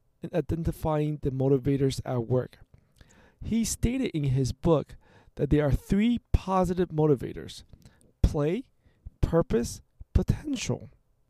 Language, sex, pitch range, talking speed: English, male, 135-175 Hz, 105 wpm